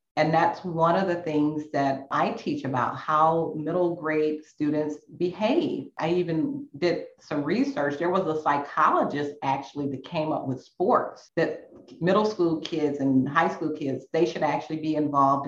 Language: English